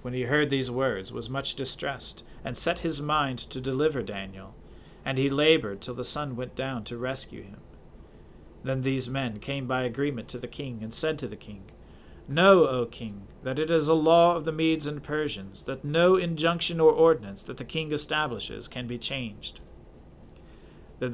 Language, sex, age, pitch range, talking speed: English, male, 40-59, 115-150 Hz, 185 wpm